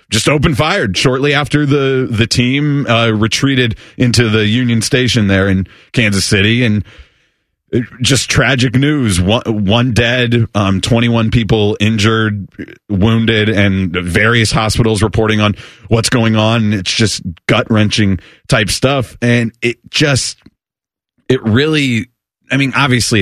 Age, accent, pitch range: 30-49, American, 100-120 Hz